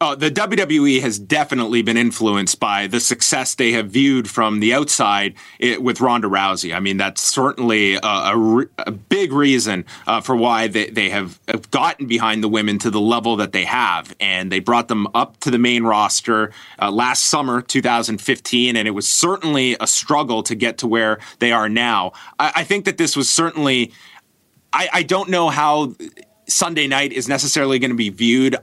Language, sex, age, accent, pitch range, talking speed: English, male, 30-49, American, 110-135 Hz, 195 wpm